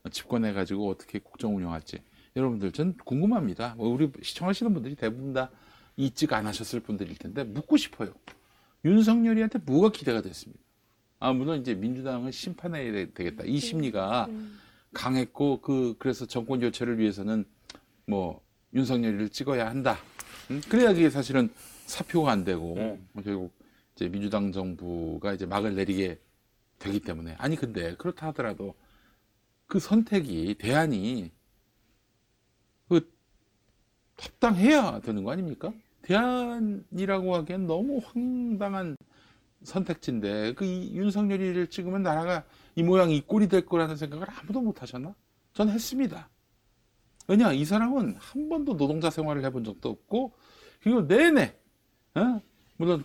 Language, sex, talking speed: English, male, 115 wpm